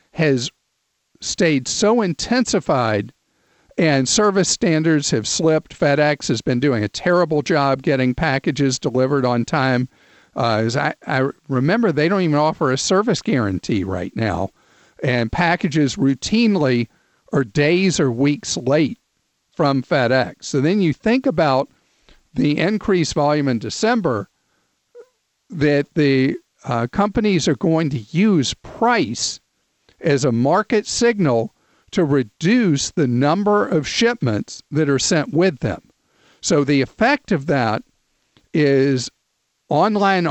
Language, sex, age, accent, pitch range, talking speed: English, male, 50-69, American, 135-180 Hz, 130 wpm